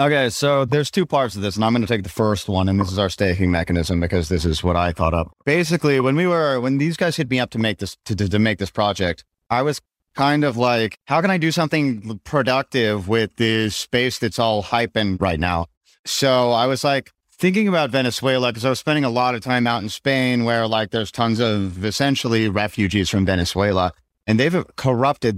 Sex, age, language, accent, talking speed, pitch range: male, 30-49, English, American, 225 wpm, 100-130 Hz